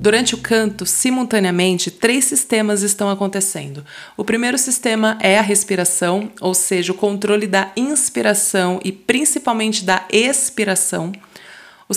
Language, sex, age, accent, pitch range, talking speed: Portuguese, female, 20-39, Brazilian, 195-240 Hz, 125 wpm